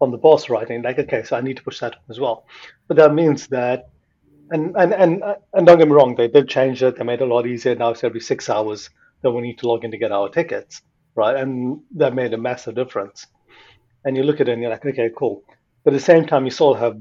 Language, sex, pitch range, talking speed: English, male, 120-150 Hz, 270 wpm